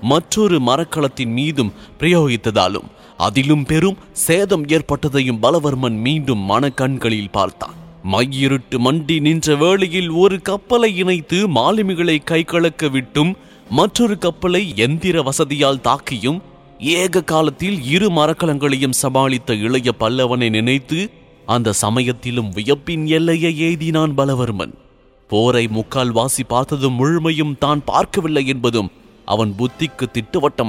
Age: 30-49